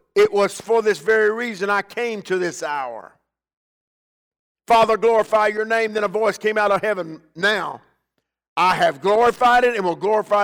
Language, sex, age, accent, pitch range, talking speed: English, male, 50-69, American, 190-220 Hz, 170 wpm